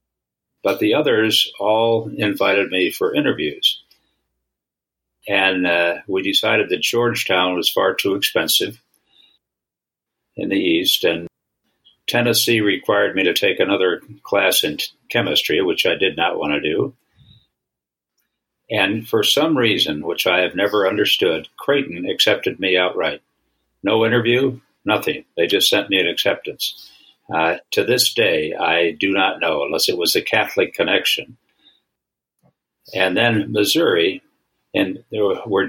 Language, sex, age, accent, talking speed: English, male, 60-79, American, 135 wpm